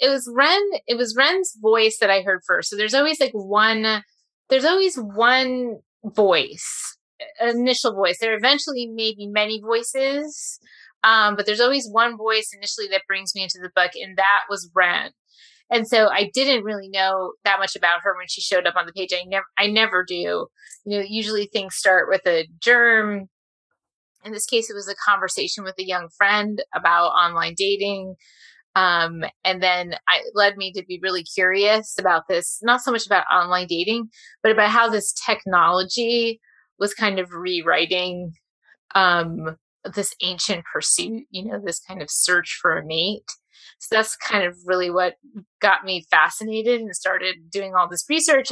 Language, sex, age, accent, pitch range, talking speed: English, female, 20-39, American, 185-230 Hz, 180 wpm